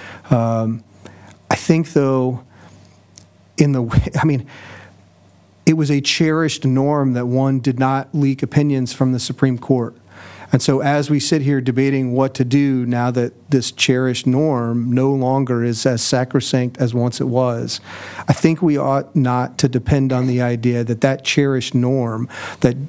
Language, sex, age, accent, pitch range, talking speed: English, male, 40-59, American, 120-135 Hz, 165 wpm